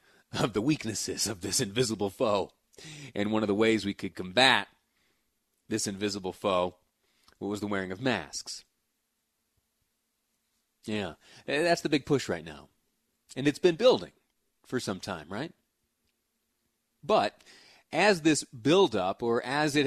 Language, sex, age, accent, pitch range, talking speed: English, male, 30-49, American, 105-130 Hz, 135 wpm